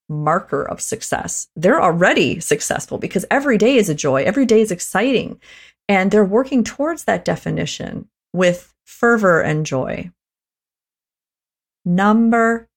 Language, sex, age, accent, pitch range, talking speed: English, female, 30-49, American, 165-225 Hz, 125 wpm